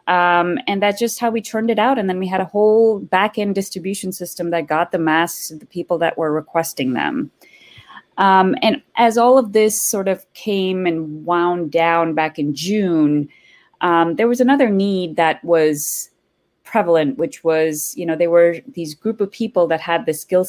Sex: female